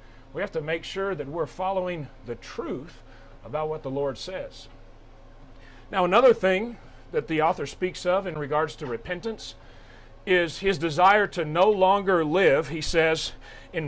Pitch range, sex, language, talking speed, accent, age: 130-185 Hz, male, English, 160 wpm, American, 40-59